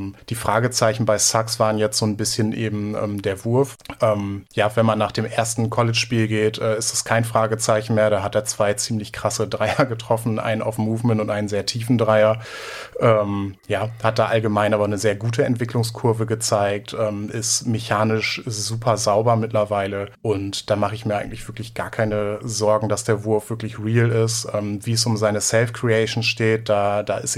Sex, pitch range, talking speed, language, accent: male, 105-115 Hz, 190 wpm, German, German